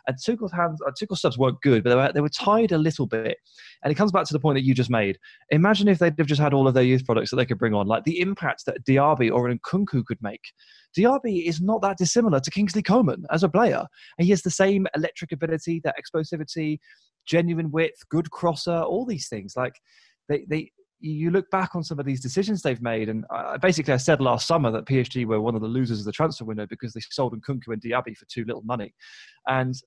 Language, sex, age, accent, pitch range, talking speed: English, male, 20-39, British, 120-165 Hz, 245 wpm